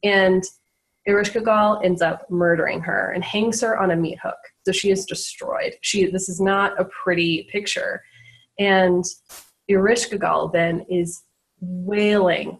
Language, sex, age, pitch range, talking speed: English, female, 20-39, 180-210 Hz, 140 wpm